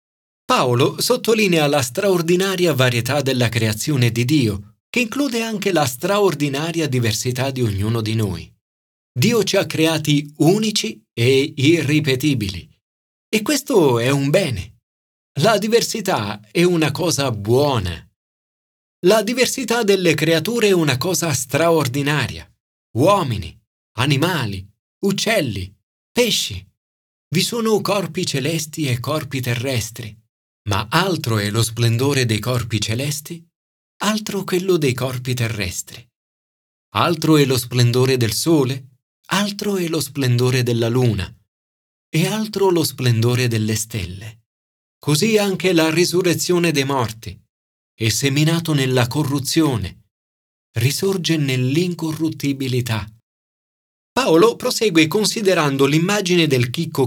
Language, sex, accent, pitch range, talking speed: Italian, male, native, 115-170 Hz, 110 wpm